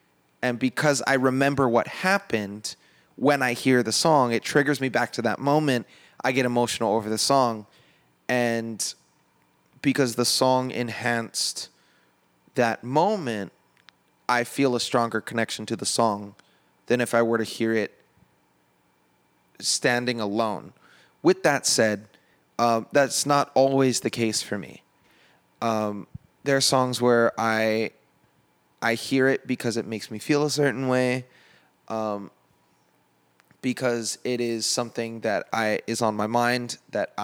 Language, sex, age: English, male, 20-39